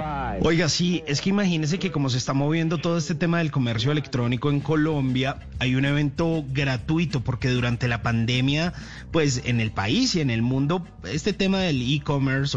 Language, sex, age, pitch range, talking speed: English, male, 30-49, 120-165 Hz, 180 wpm